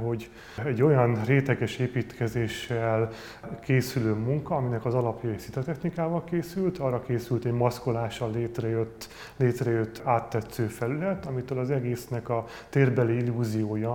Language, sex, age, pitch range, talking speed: Hungarian, male, 30-49, 115-135 Hz, 115 wpm